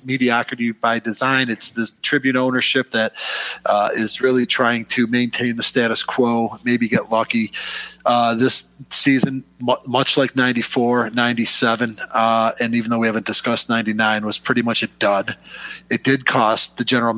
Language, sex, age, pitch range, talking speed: English, male, 40-59, 115-135 Hz, 160 wpm